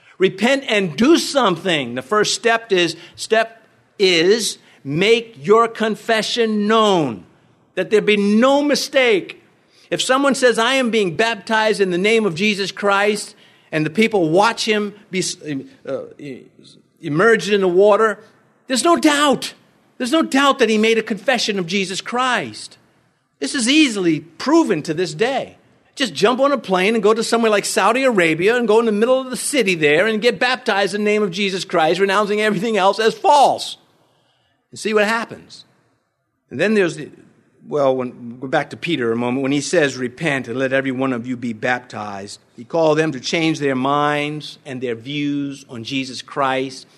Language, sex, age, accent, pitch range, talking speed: English, male, 50-69, American, 145-225 Hz, 180 wpm